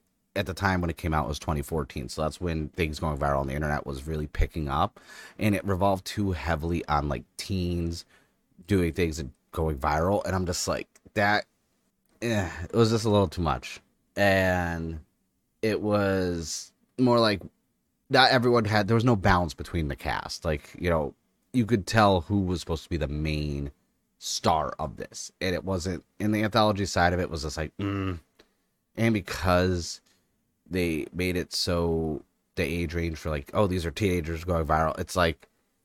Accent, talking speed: American, 185 wpm